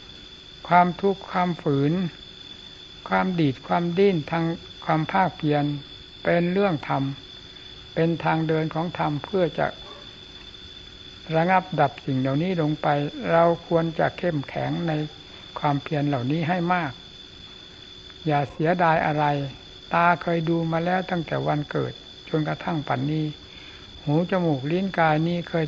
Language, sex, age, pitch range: Thai, male, 60-79, 125-170 Hz